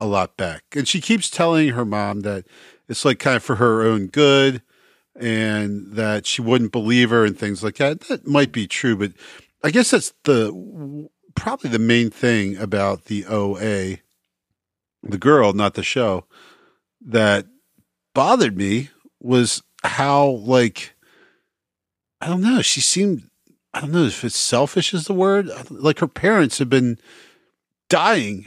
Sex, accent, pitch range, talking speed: male, American, 105-150 Hz, 160 wpm